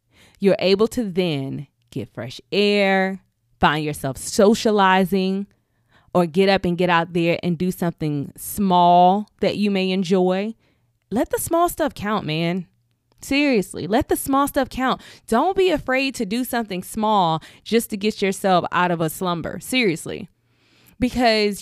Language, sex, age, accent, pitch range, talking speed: English, female, 20-39, American, 175-235 Hz, 150 wpm